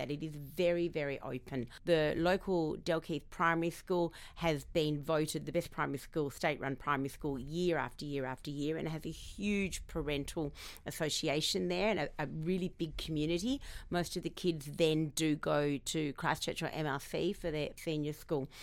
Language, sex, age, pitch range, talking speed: English, female, 40-59, 150-180 Hz, 175 wpm